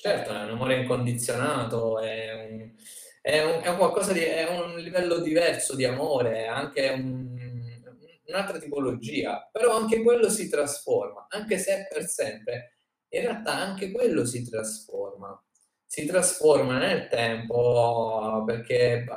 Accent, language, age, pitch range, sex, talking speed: native, Italian, 20-39, 115-170 Hz, male, 140 wpm